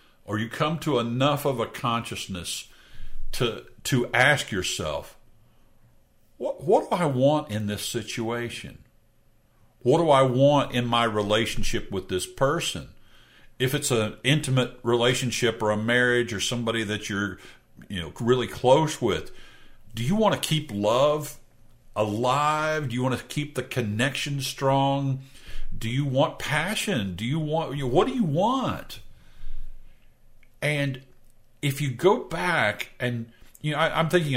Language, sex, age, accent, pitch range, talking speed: English, male, 50-69, American, 110-135 Hz, 145 wpm